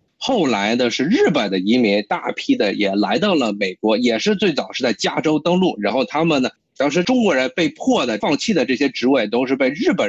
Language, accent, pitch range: Chinese, native, 140-215 Hz